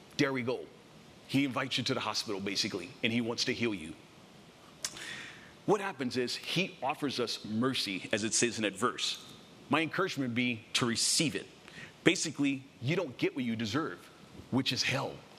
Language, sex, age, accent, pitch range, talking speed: English, male, 40-59, American, 120-160 Hz, 180 wpm